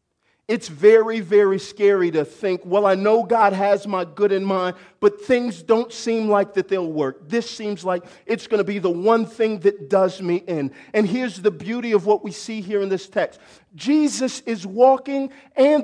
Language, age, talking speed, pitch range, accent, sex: English, 50-69, 200 wpm, 165-220 Hz, American, male